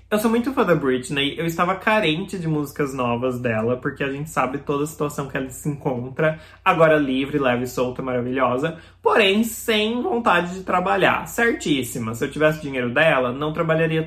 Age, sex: 20-39, male